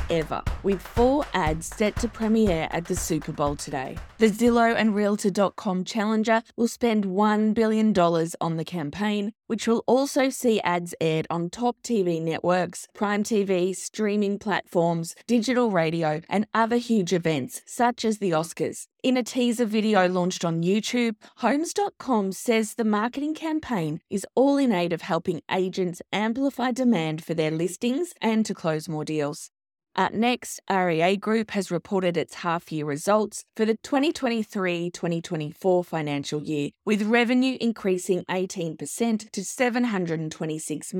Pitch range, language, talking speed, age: 170-230 Hz, English, 140 wpm, 20-39